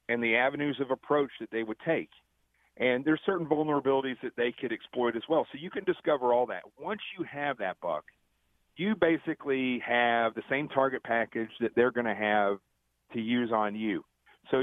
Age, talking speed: 40-59, 195 wpm